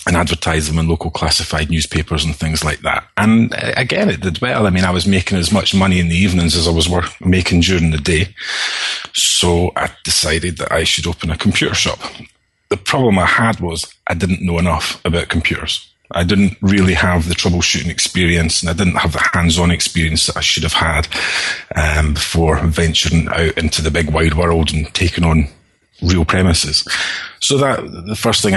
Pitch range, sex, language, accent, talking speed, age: 85-100 Hz, male, English, British, 195 wpm, 30-49